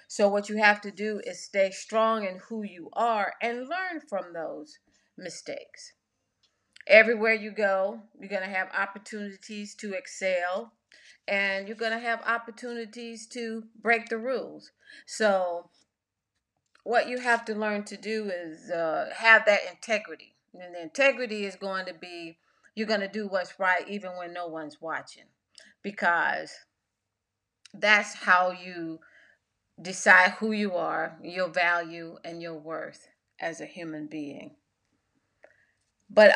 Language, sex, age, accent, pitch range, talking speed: English, female, 40-59, American, 170-220 Hz, 145 wpm